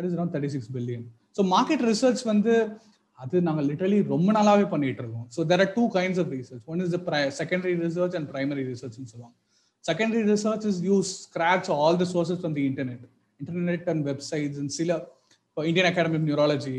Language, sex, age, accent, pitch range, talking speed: Tamil, male, 30-49, native, 140-190 Hz, 185 wpm